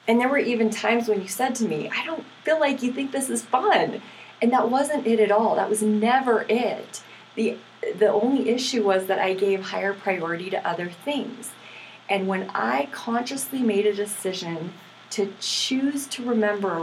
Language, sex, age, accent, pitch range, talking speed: English, female, 30-49, American, 190-260 Hz, 190 wpm